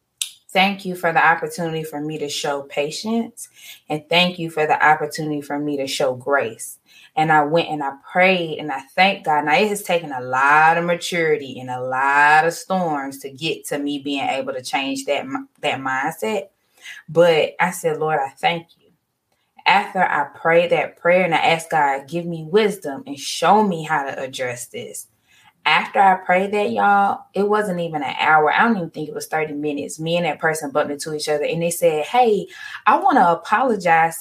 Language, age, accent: English, 20-39, American